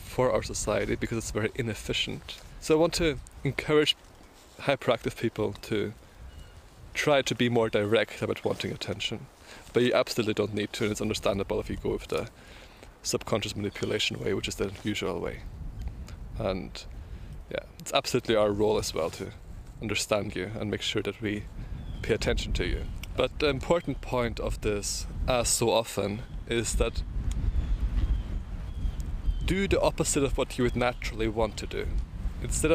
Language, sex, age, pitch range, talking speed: English, male, 20-39, 90-125 Hz, 160 wpm